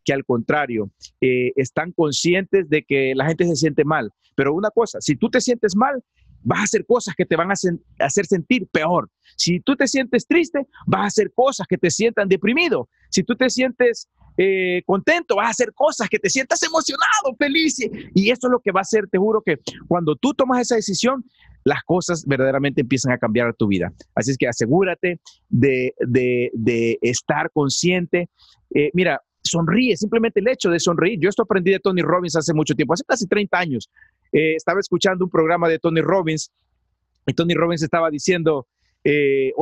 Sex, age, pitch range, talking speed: male, 40-59, 155-220 Hz, 190 wpm